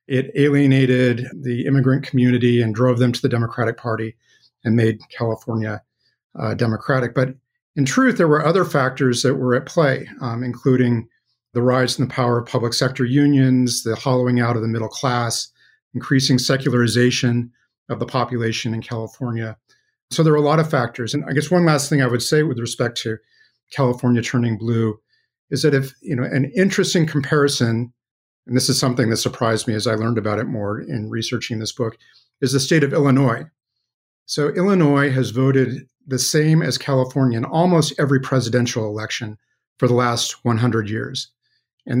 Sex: male